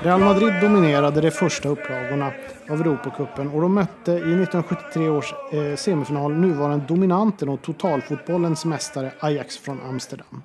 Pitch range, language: 140-170 Hz, Swedish